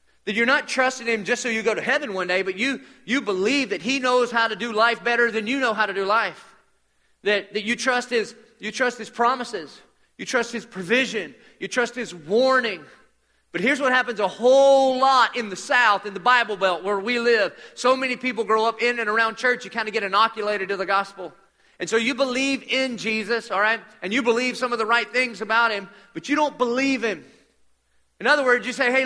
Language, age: English, 30-49